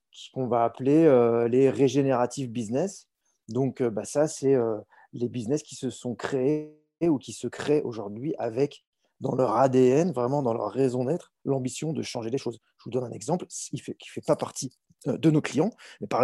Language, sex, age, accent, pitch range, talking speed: French, male, 20-39, French, 120-145 Hz, 205 wpm